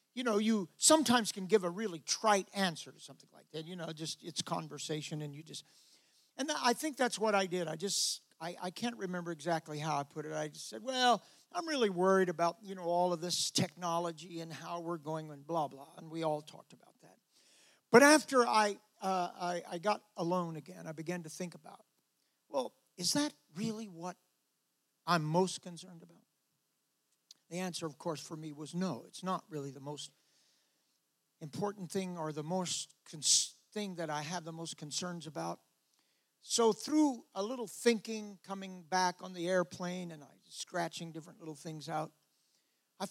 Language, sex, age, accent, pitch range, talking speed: English, male, 60-79, American, 155-195 Hz, 190 wpm